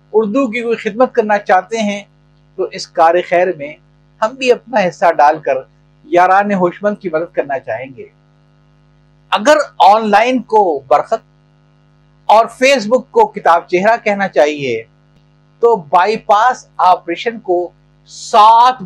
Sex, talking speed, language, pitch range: male, 55 wpm, Urdu, 150-235 Hz